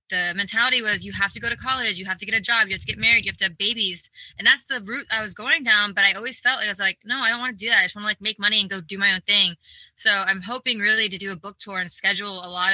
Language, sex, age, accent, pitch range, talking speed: English, female, 20-39, American, 195-240 Hz, 345 wpm